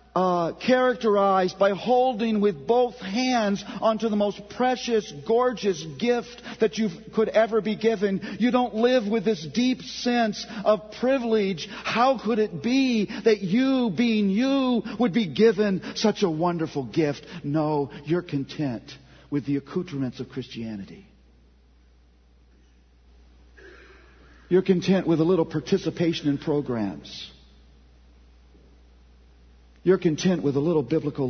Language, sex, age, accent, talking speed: English, male, 50-69, American, 125 wpm